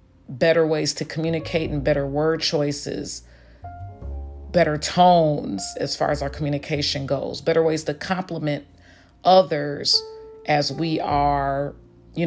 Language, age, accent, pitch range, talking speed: English, 40-59, American, 140-160 Hz, 120 wpm